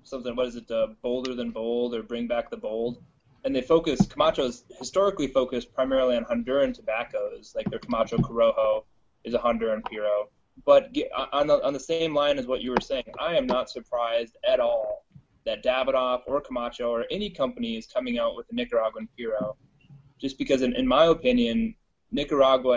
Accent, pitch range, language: American, 120-175 Hz, English